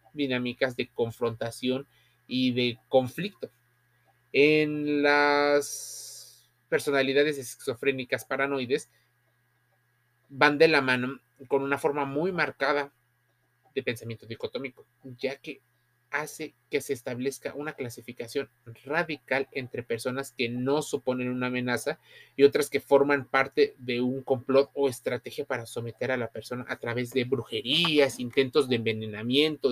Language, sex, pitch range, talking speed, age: Spanish, male, 120-140 Hz, 125 wpm, 30-49